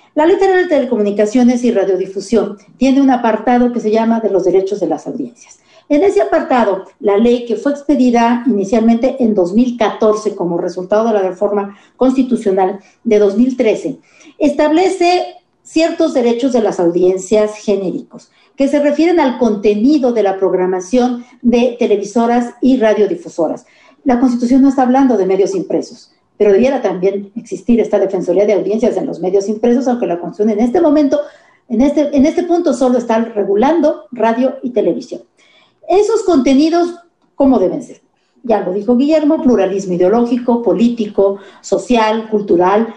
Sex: female